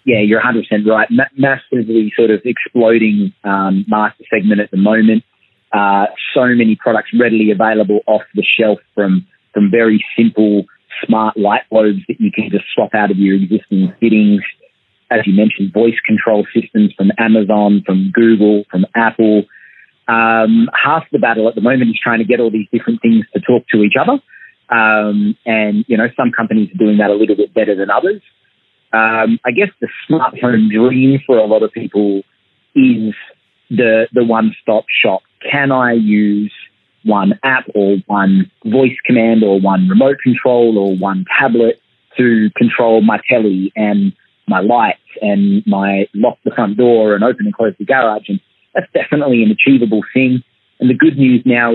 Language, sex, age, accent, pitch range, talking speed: English, male, 30-49, Australian, 105-120 Hz, 175 wpm